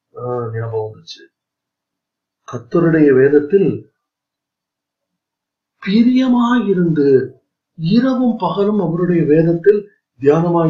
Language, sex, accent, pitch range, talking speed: Tamil, male, native, 145-195 Hz, 55 wpm